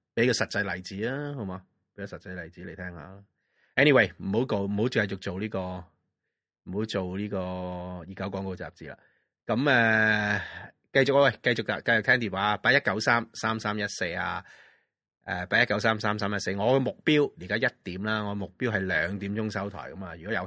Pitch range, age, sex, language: 90-110 Hz, 30-49, male, Chinese